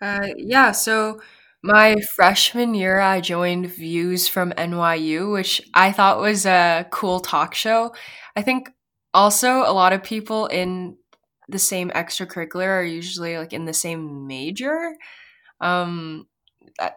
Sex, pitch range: female, 170-205 Hz